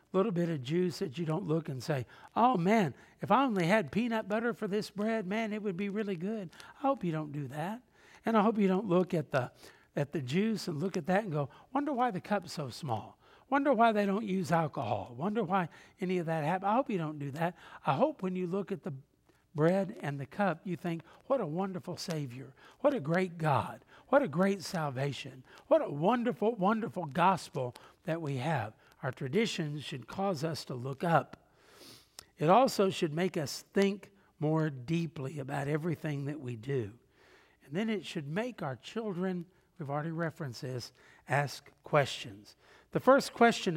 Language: English